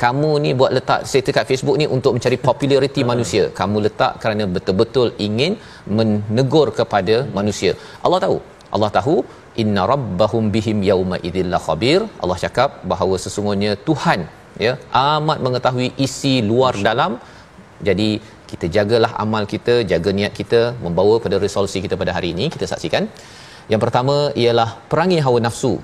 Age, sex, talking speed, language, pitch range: 40-59, male, 150 wpm, Malayalam, 105-135 Hz